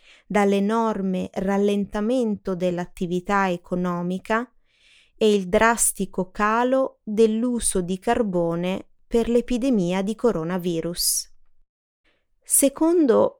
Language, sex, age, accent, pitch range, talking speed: Italian, female, 20-39, native, 185-235 Hz, 70 wpm